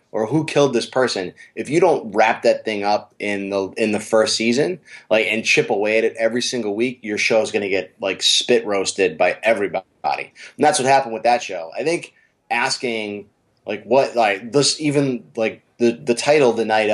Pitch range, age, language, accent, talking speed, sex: 100-120 Hz, 20-39, English, American, 205 wpm, male